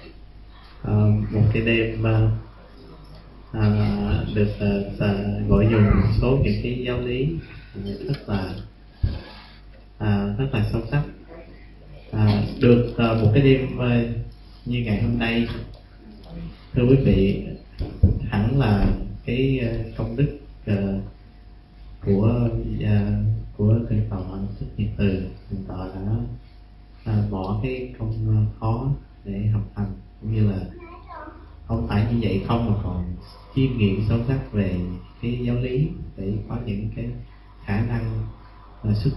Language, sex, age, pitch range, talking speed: Vietnamese, male, 20-39, 100-120 Hz, 135 wpm